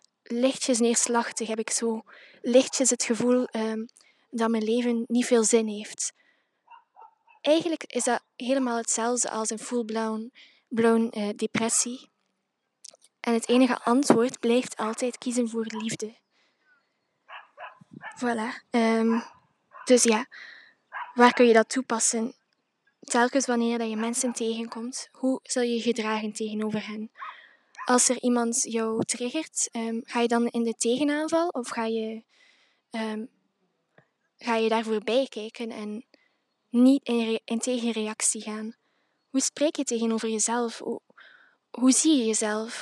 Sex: female